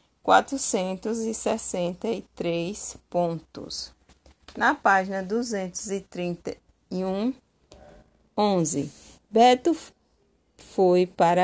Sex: female